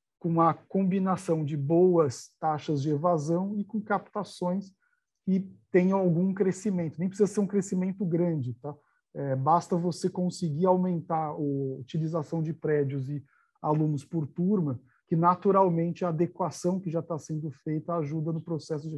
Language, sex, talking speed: Portuguese, male, 150 wpm